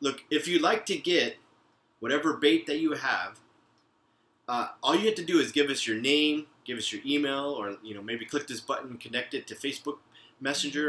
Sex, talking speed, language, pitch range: male, 215 wpm, English, 125-175 Hz